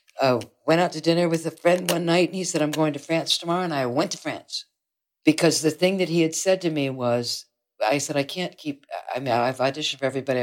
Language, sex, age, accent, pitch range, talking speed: English, female, 60-79, American, 140-185 Hz, 260 wpm